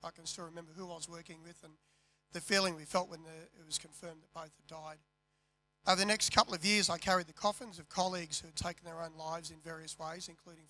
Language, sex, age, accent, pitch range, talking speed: English, male, 40-59, Australian, 160-180 Hz, 245 wpm